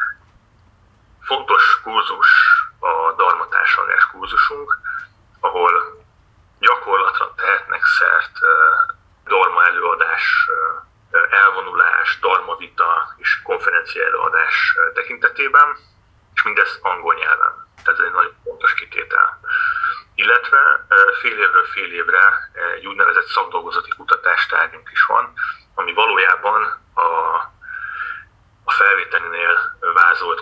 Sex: male